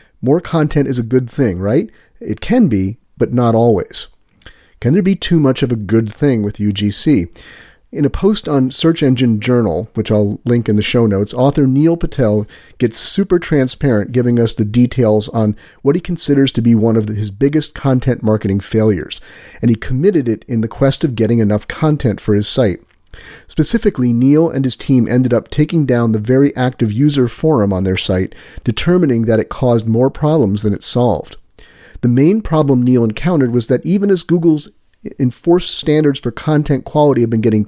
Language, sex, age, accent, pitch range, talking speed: English, male, 40-59, American, 110-145 Hz, 190 wpm